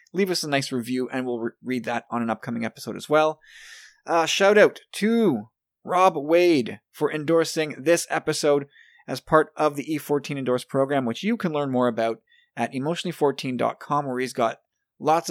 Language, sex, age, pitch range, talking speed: English, male, 20-39, 125-165 Hz, 175 wpm